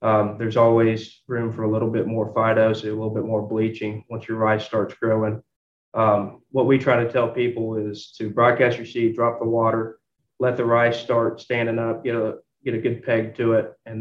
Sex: male